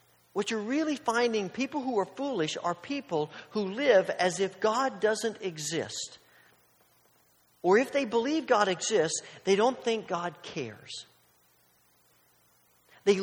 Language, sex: English, male